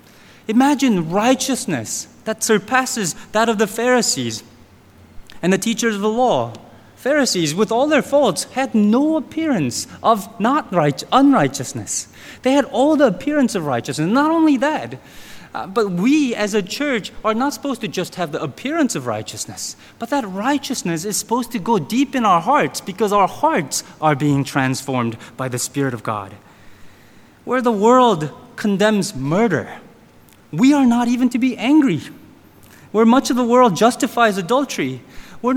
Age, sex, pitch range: 30-49, male, 170-255 Hz